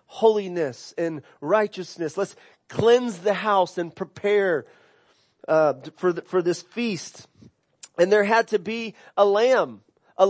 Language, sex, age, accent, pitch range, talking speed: English, male, 30-49, American, 190-235 Hz, 135 wpm